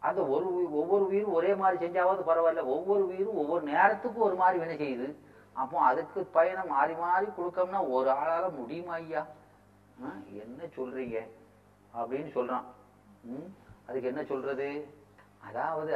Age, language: 40-59, Tamil